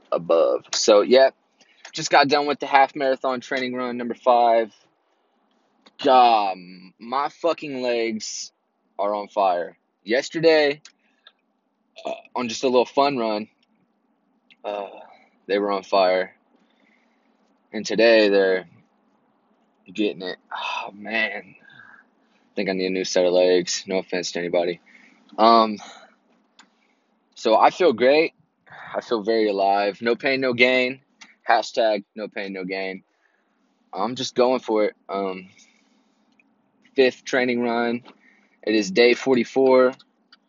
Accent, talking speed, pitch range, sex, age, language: American, 125 wpm, 105-135 Hz, male, 20-39, English